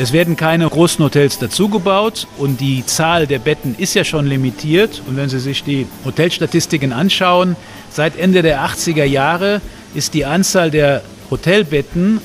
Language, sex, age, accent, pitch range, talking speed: German, male, 50-69, German, 140-175 Hz, 155 wpm